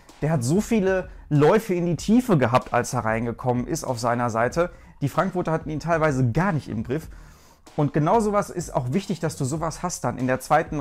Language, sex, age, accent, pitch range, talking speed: German, male, 40-59, German, 130-170 Hz, 215 wpm